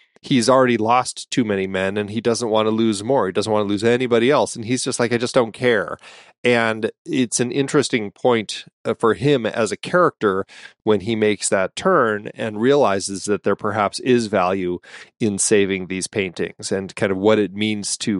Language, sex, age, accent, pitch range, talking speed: English, male, 30-49, American, 100-120 Hz, 200 wpm